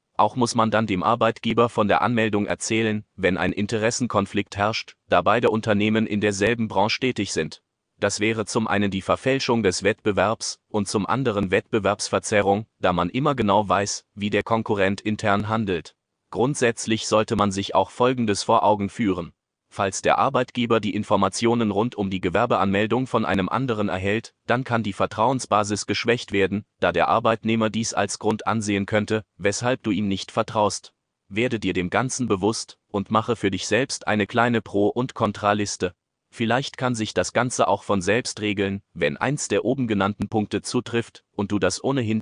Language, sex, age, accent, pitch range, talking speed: German, male, 30-49, German, 100-115 Hz, 170 wpm